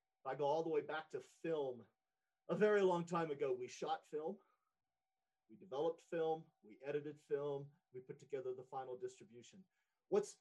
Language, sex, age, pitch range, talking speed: English, male, 40-59, 135-210 Hz, 165 wpm